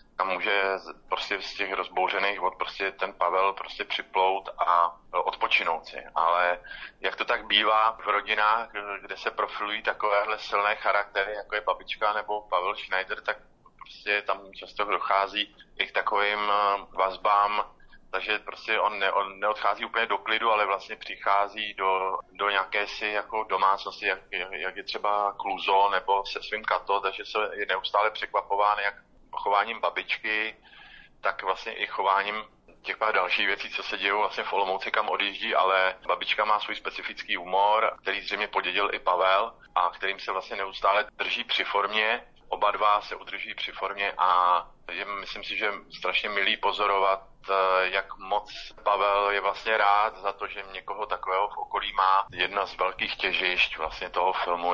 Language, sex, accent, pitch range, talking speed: Czech, male, native, 95-105 Hz, 160 wpm